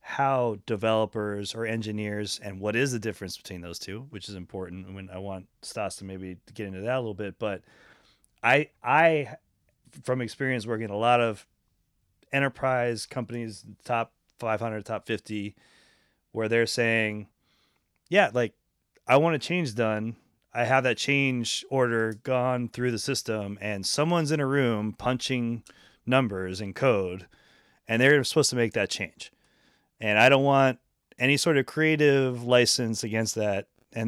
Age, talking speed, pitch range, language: 30-49, 160 wpm, 105-130 Hz, English